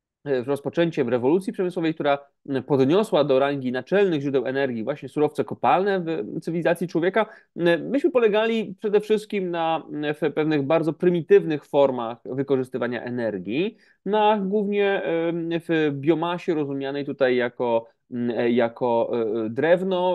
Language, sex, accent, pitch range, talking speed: Polish, male, native, 135-185 Hz, 115 wpm